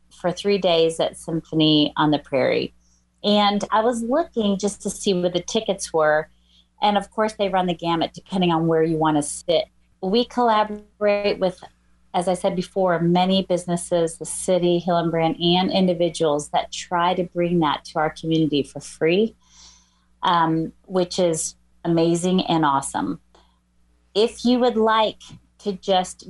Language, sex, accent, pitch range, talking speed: English, female, American, 155-205 Hz, 155 wpm